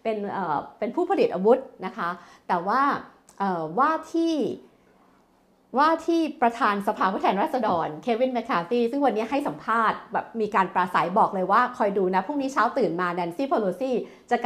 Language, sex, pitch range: Thai, female, 190-265 Hz